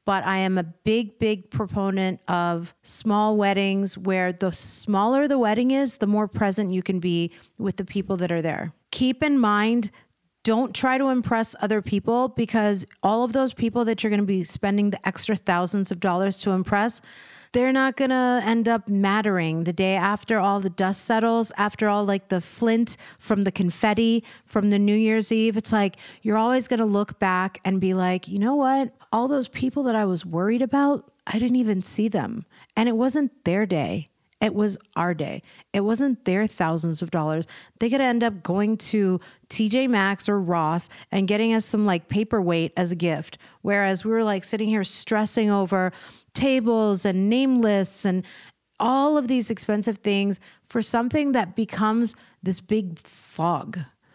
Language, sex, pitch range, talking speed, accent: English, female, 190-230 Hz, 185 wpm, American